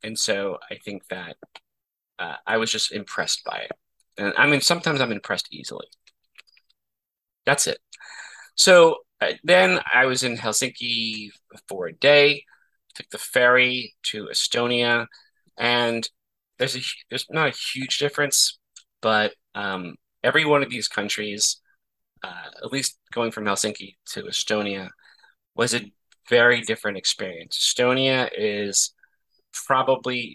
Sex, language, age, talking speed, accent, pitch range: male, English, 30-49, 130 wpm, American, 110-145 Hz